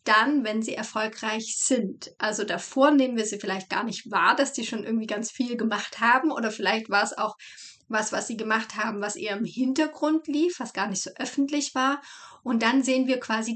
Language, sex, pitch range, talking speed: German, female, 220-275 Hz, 215 wpm